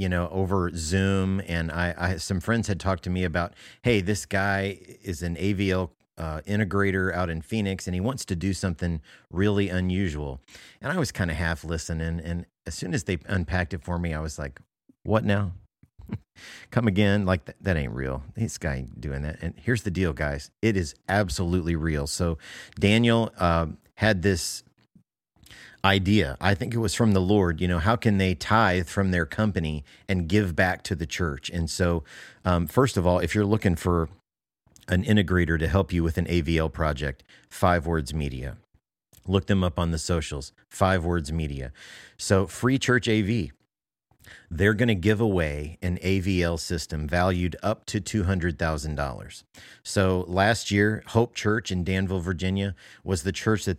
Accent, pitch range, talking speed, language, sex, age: American, 85-100 Hz, 180 wpm, English, male, 40-59